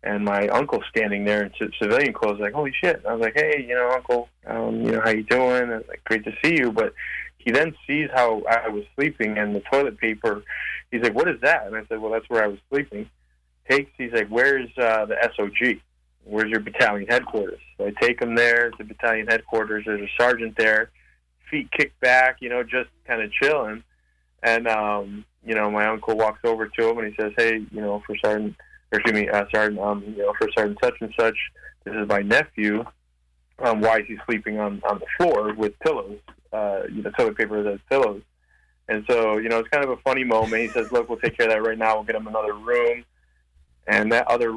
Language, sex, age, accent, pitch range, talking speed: English, male, 20-39, American, 105-120 Hz, 230 wpm